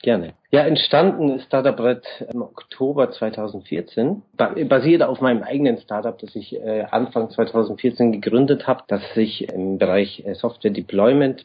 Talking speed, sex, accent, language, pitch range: 135 wpm, male, German, German, 105-125 Hz